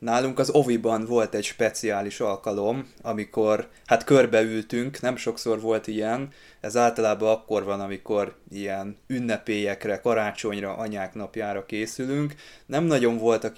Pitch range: 105-120 Hz